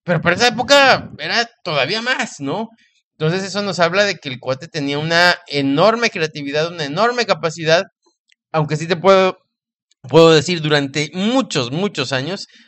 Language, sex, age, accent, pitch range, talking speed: English, male, 30-49, Mexican, 150-205 Hz, 160 wpm